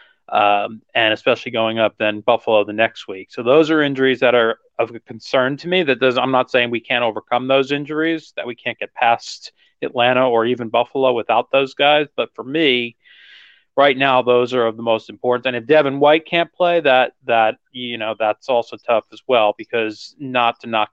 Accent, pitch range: American, 110-130 Hz